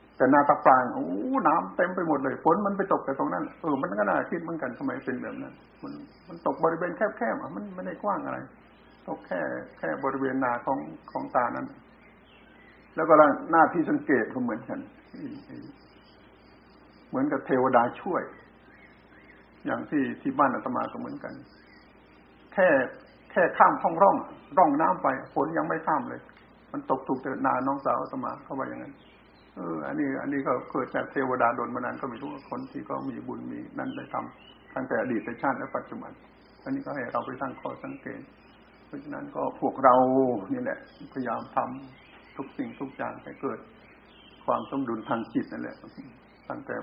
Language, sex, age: Thai, male, 60-79